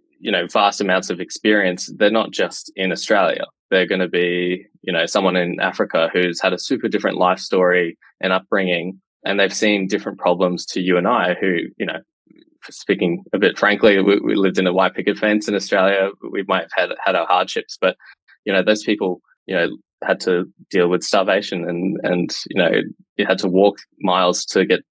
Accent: Australian